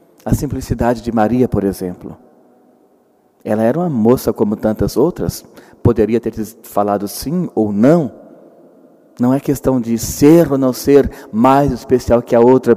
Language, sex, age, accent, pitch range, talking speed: Portuguese, male, 40-59, Brazilian, 115-145 Hz, 150 wpm